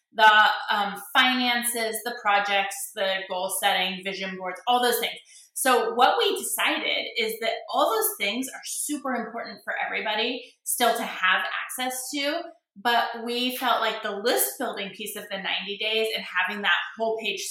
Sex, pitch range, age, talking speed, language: female, 210-255 Hz, 20-39, 170 wpm, English